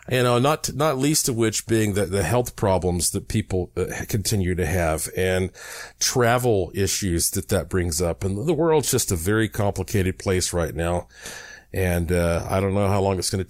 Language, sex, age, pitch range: English, male, 50-69, 95-130 Hz